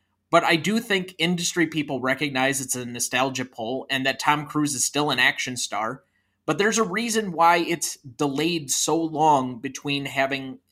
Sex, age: male, 30-49